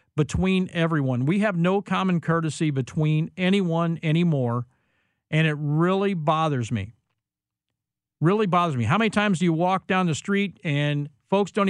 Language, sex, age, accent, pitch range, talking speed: English, male, 50-69, American, 145-185 Hz, 155 wpm